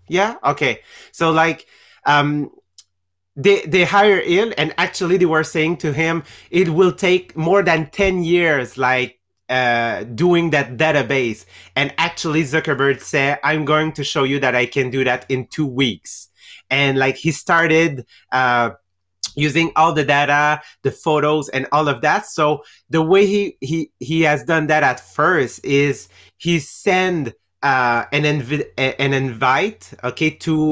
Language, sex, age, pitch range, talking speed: English, male, 30-49, 130-160 Hz, 160 wpm